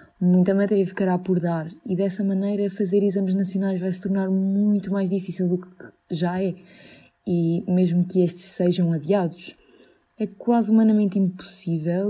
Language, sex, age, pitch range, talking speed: Portuguese, female, 20-39, 175-200 Hz, 155 wpm